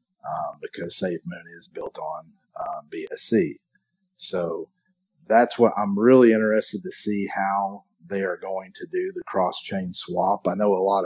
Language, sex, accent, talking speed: English, male, American, 155 wpm